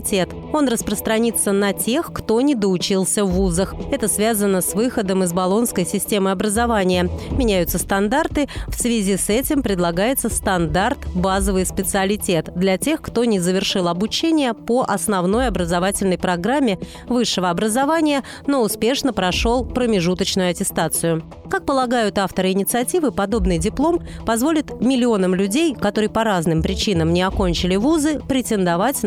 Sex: female